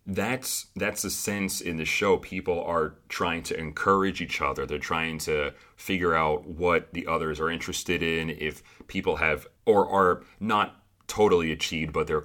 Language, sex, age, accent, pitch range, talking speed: English, male, 30-49, American, 75-95 Hz, 170 wpm